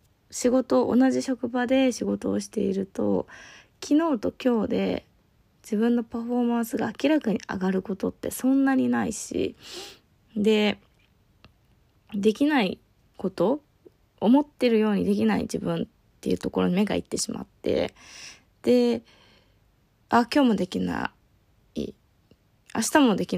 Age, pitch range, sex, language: 20-39, 195-250 Hz, female, Japanese